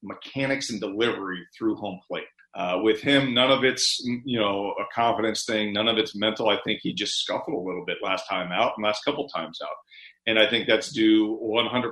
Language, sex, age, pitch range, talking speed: English, male, 40-59, 105-130 Hz, 215 wpm